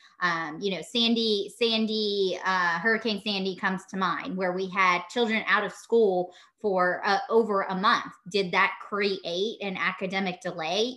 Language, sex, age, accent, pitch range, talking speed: English, female, 20-39, American, 180-220 Hz, 160 wpm